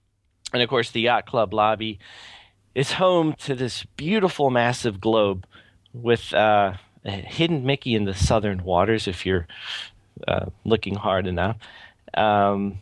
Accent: American